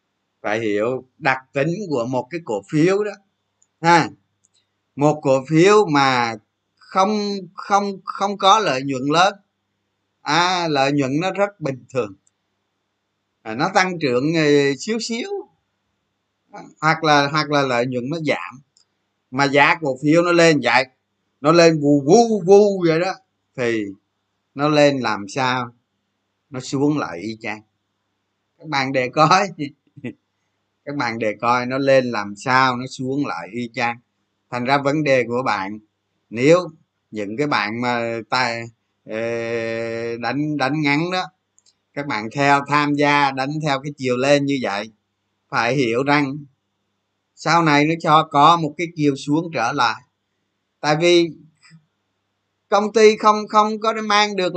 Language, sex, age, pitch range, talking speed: Vietnamese, male, 20-39, 105-160 Hz, 150 wpm